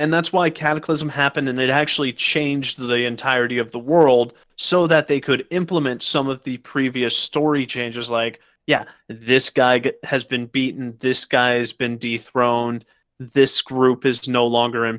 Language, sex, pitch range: English, male, 120-145 Hz